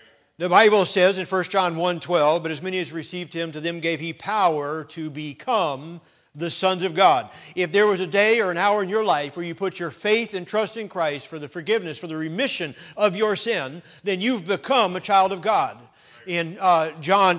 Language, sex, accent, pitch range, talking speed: English, male, American, 175-230 Hz, 215 wpm